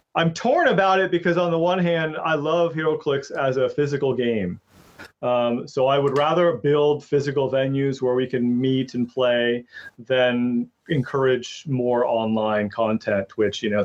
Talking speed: 165 wpm